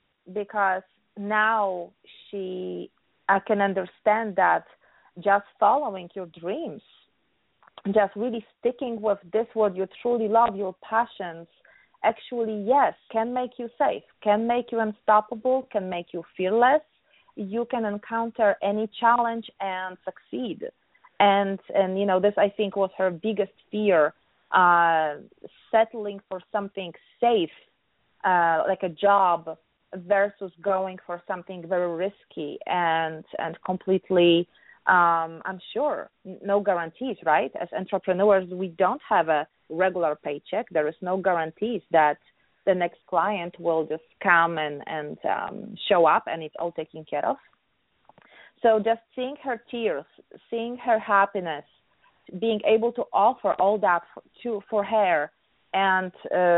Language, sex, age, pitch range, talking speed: English, female, 30-49, 175-220 Hz, 135 wpm